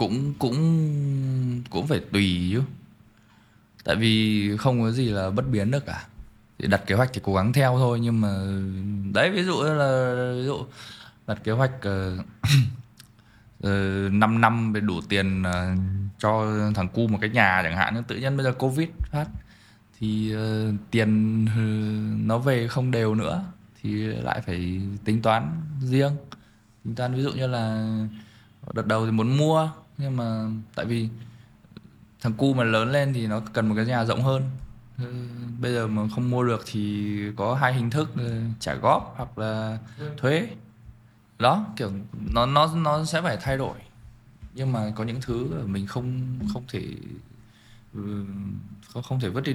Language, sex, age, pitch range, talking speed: Vietnamese, male, 20-39, 105-125 Hz, 170 wpm